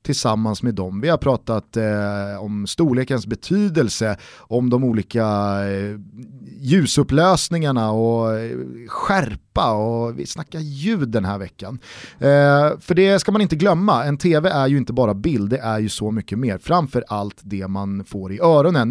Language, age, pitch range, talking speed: Swedish, 30-49, 105-160 Hz, 150 wpm